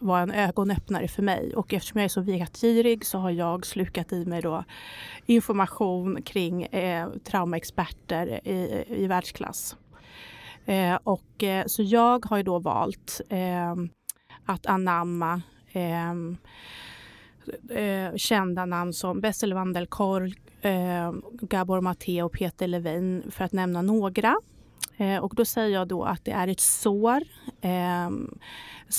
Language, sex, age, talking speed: Swedish, female, 30-49, 140 wpm